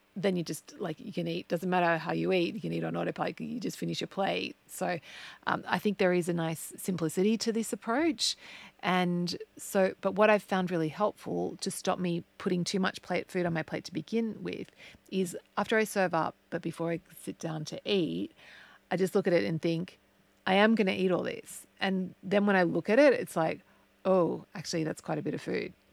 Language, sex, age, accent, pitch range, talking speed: English, female, 30-49, Australian, 170-205 Hz, 230 wpm